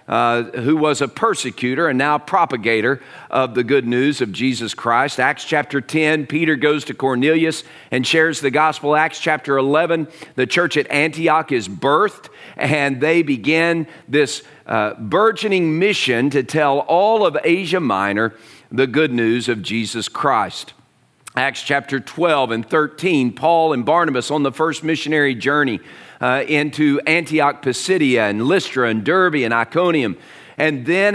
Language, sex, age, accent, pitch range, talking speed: English, male, 40-59, American, 125-160 Hz, 150 wpm